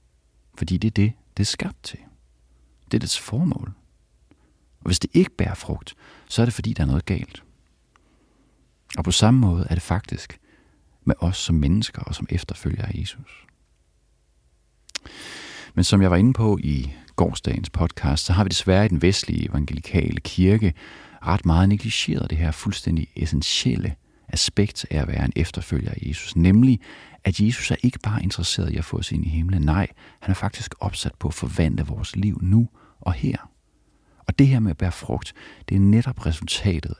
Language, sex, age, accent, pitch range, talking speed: English, male, 40-59, Danish, 80-105 Hz, 185 wpm